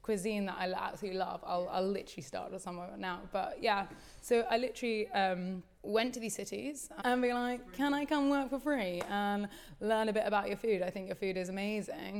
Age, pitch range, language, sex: 20-39, 185-225 Hz, English, female